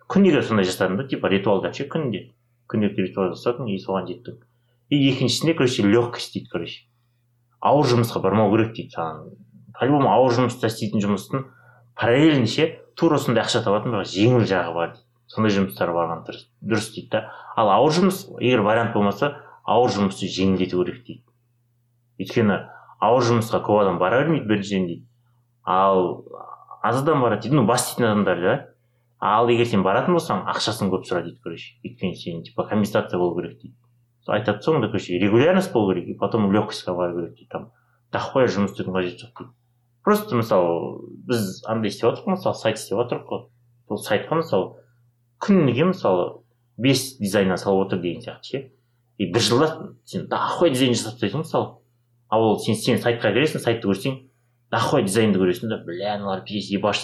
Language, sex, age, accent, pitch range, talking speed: Russian, male, 30-49, Turkish, 100-125 Hz, 65 wpm